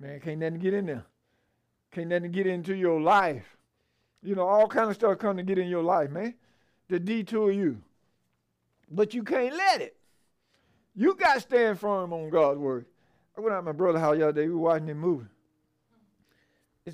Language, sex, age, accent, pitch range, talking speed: English, male, 50-69, American, 160-225 Hz, 195 wpm